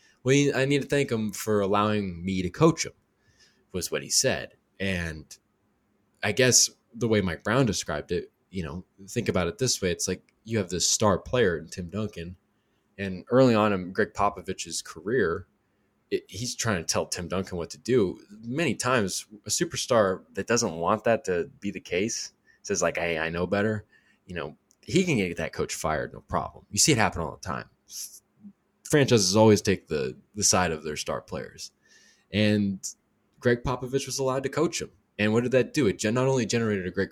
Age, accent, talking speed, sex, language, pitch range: 20-39, American, 195 wpm, male, English, 90-125 Hz